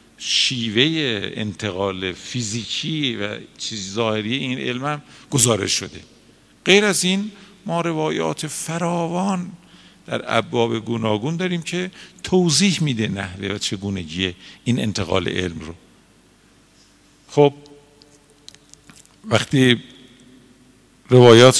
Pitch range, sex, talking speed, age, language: 105-140 Hz, male, 95 wpm, 50-69, Persian